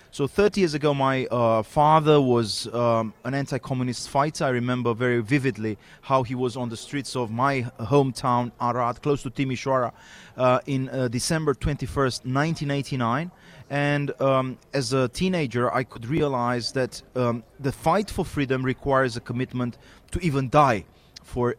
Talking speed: 155 wpm